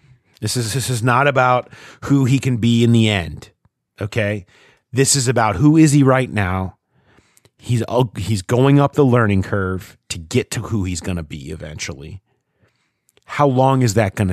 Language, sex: English, male